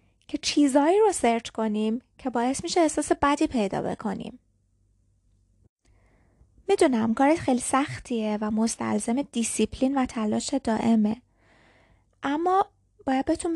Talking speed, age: 105 wpm, 20-39